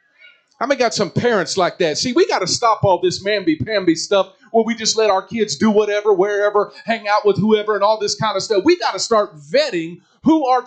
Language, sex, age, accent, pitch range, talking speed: English, male, 40-59, American, 210-290 Hz, 235 wpm